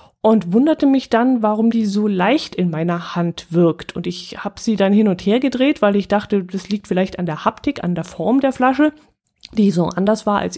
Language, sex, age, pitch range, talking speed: German, female, 30-49, 180-240 Hz, 225 wpm